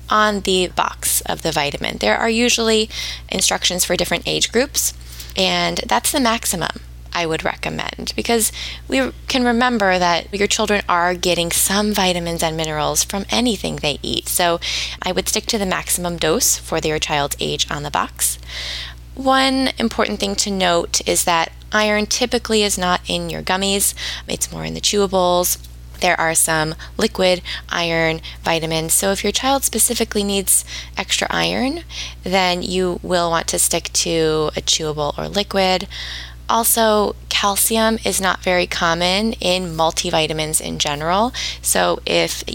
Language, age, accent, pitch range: English, 20-39, American, 155-205 Hz